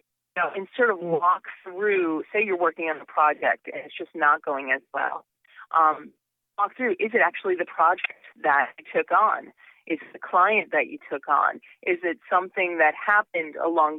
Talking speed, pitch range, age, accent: 190 wpm, 165-240 Hz, 30-49, American